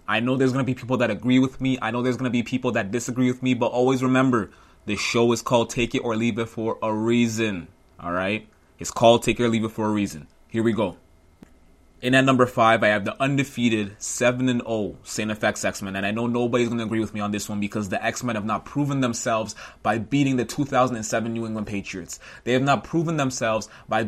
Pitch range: 105-125 Hz